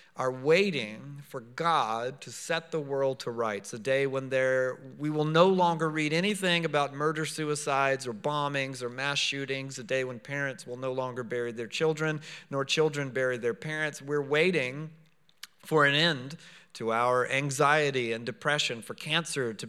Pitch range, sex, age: 125-155 Hz, male, 40-59